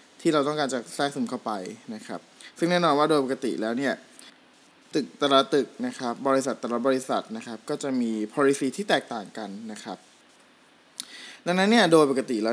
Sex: male